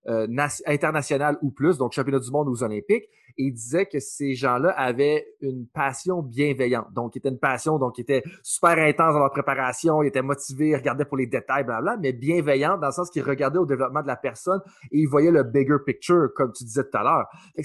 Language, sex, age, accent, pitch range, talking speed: French, male, 30-49, Canadian, 140-195 Hz, 240 wpm